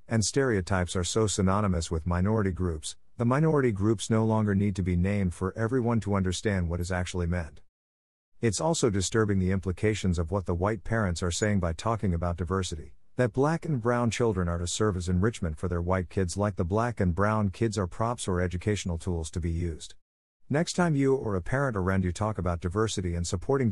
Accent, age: American, 50-69